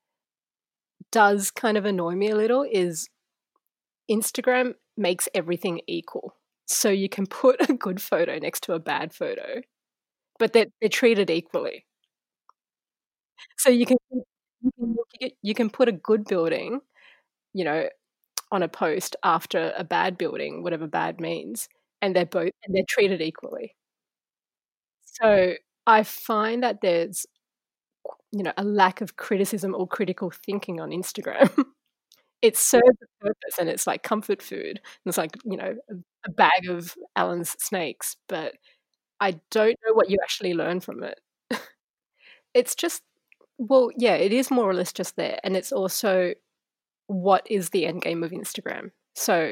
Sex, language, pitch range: female, English, 185-250 Hz